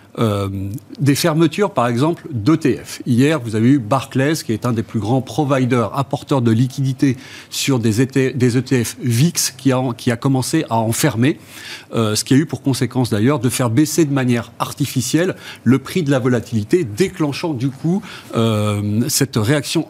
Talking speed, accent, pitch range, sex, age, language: 180 wpm, French, 115-145 Hz, male, 40-59, French